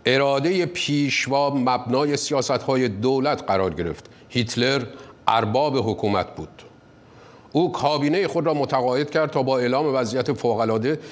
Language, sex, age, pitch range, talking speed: Persian, male, 50-69, 120-150 Hz, 130 wpm